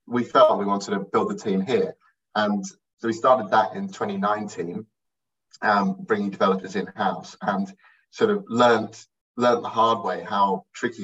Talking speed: 165 wpm